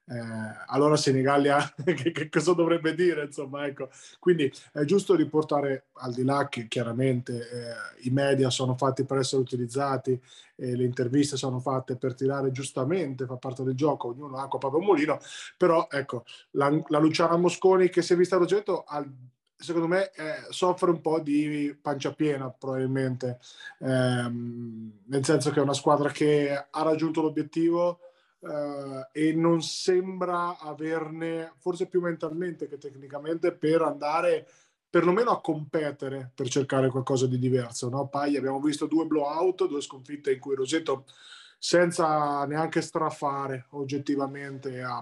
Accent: native